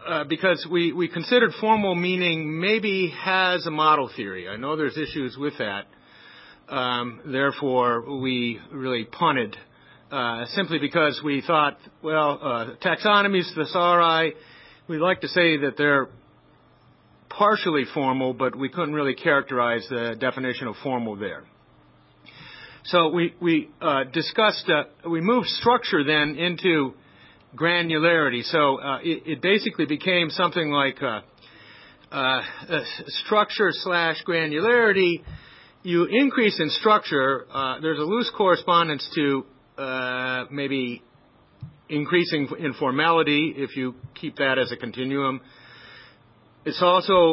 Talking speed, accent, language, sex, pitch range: 125 wpm, American, English, male, 135-180 Hz